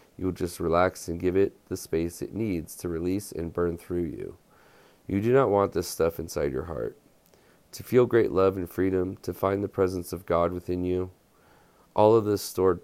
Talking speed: 205 wpm